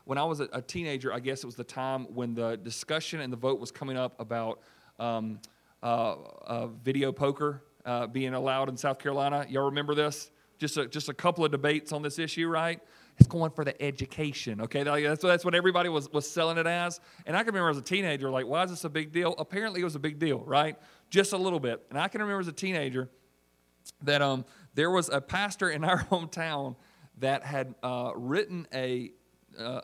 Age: 40-59